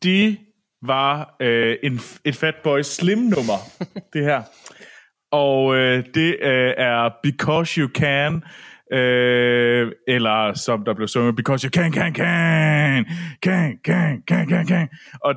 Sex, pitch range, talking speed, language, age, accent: male, 120-155 Hz, 135 wpm, Danish, 30-49, native